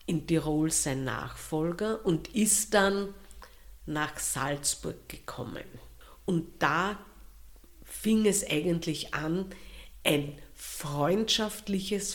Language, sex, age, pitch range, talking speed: German, female, 50-69, 145-190 Hz, 90 wpm